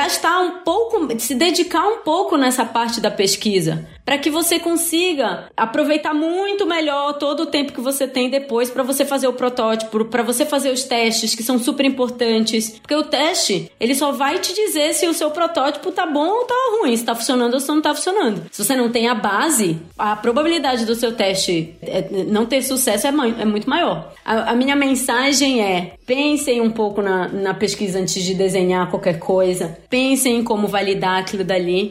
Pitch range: 215-295 Hz